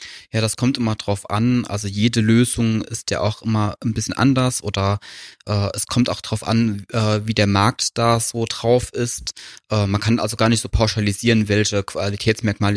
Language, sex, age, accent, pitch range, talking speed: German, male, 20-39, German, 100-115 Hz, 195 wpm